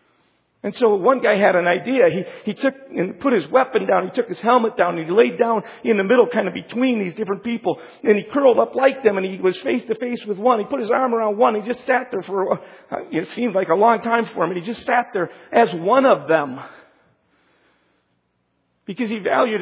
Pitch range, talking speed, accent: 180-235 Hz, 235 wpm, American